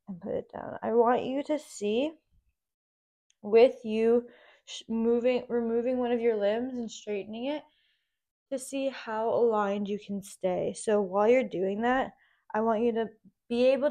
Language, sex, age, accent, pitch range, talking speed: English, female, 20-39, American, 205-250 Hz, 165 wpm